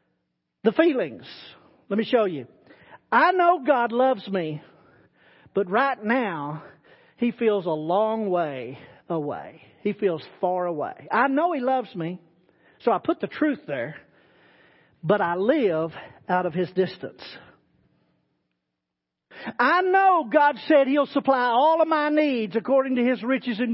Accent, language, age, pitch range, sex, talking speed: American, English, 50-69, 175-290 Hz, male, 145 wpm